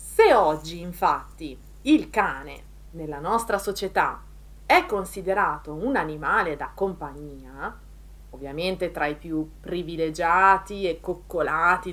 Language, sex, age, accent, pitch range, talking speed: Italian, female, 30-49, native, 160-220 Hz, 105 wpm